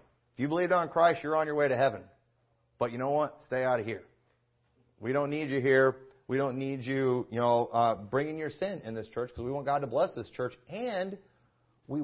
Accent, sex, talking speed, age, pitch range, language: American, male, 235 wpm, 40-59, 125-195 Hz, English